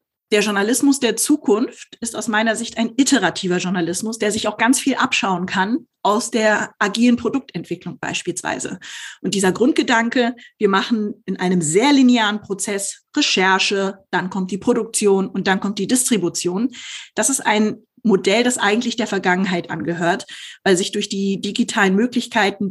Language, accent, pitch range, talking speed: German, German, 195-240 Hz, 155 wpm